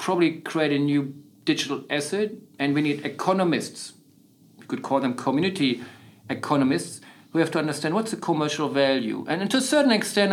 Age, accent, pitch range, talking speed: 50-69, German, 135-170 Hz, 170 wpm